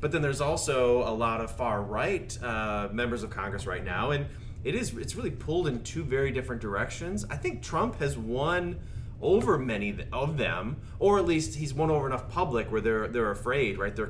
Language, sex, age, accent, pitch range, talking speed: English, male, 30-49, American, 110-140 Hz, 210 wpm